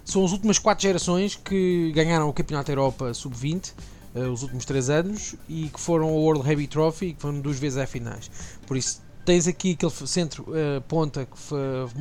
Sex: male